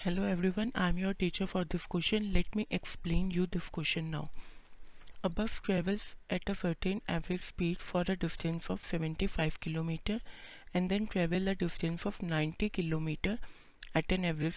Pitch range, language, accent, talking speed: 165-195 Hz, Hindi, native, 175 wpm